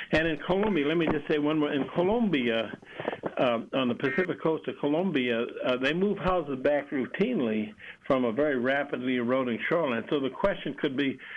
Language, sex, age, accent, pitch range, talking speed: English, male, 60-79, American, 120-150 Hz, 185 wpm